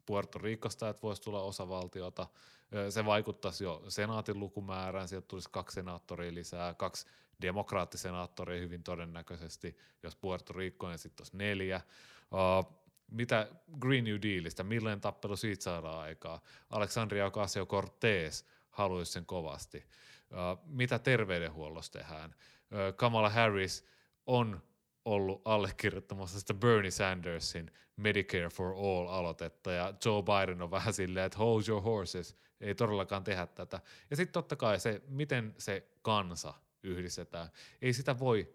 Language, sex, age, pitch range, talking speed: Finnish, male, 30-49, 90-105 Hz, 125 wpm